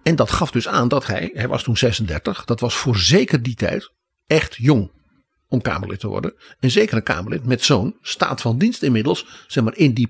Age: 60-79